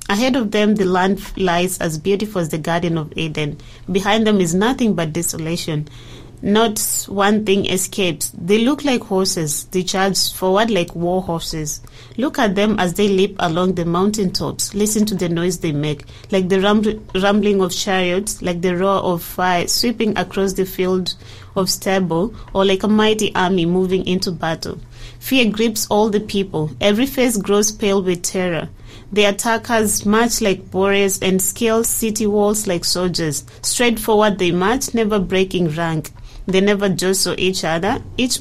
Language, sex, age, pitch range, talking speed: English, female, 30-49, 175-210 Hz, 170 wpm